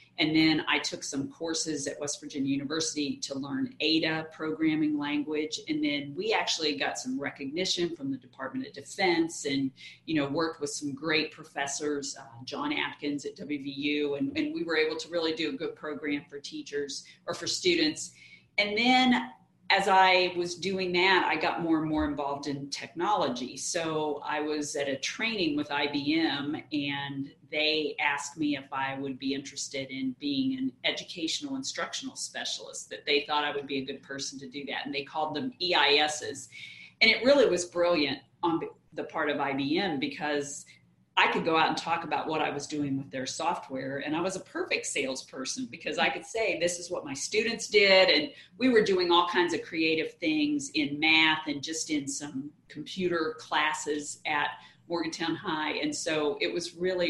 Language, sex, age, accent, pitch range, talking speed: English, female, 40-59, American, 145-185 Hz, 185 wpm